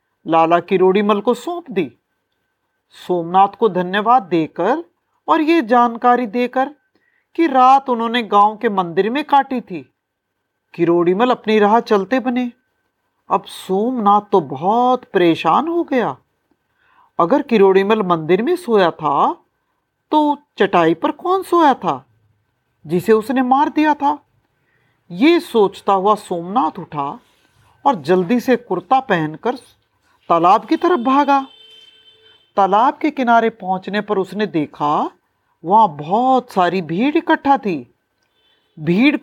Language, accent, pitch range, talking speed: Hindi, native, 185-275 Hz, 120 wpm